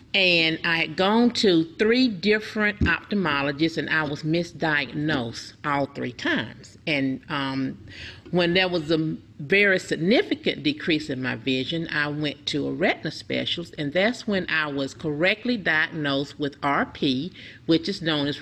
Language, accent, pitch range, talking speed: English, American, 145-200 Hz, 150 wpm